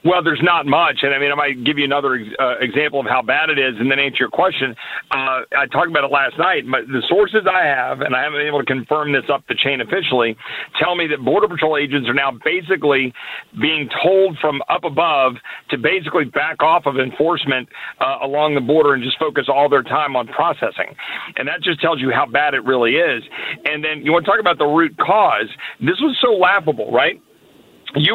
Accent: American